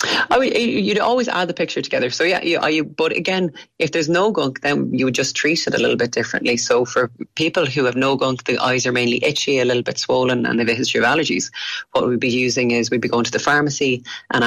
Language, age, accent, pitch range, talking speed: English, 30-49, Irish, 120-145 Hz, 260 wpm